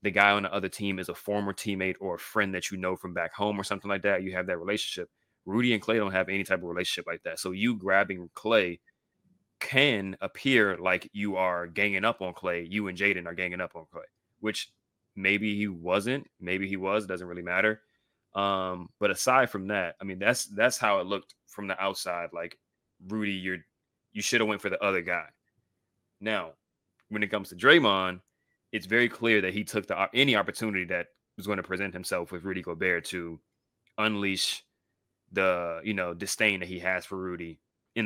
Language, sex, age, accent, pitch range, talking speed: English, male, 20-39, American, 95-110 Hz, 205 wpm